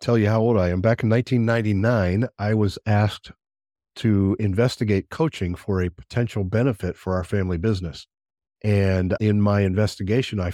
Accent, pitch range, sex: American, 95-120 Hz, male